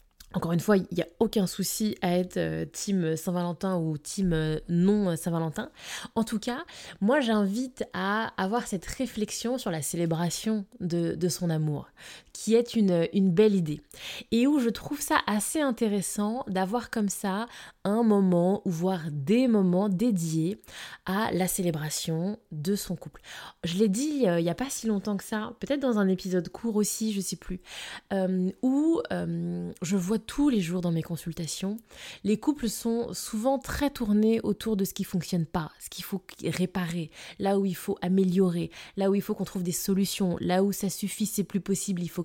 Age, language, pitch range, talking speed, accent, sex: 20-39, French, 175-220 Hz, 190 wpm, French, female